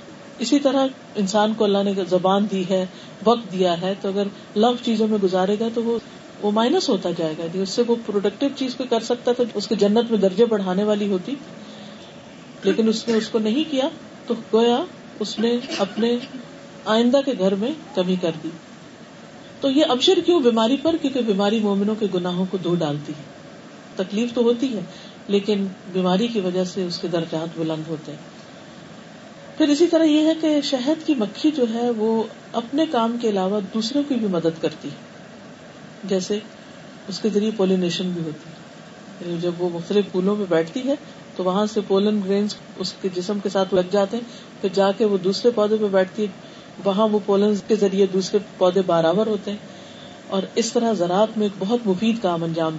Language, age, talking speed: Urdu, 40-59, 195 wpm